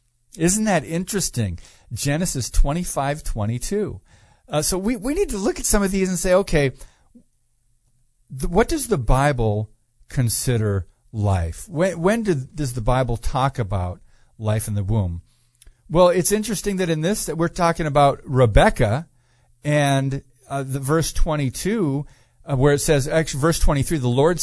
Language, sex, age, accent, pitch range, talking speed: English, male, 50-69, American, 120-160 Hz, 165 wpm